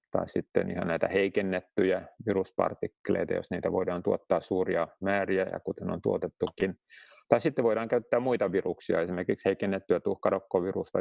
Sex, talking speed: male, 135 wpm